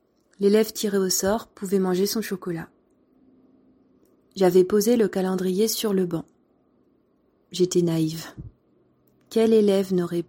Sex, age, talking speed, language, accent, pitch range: female, 30-49, 115 wpm, French, French, 170-210 Hz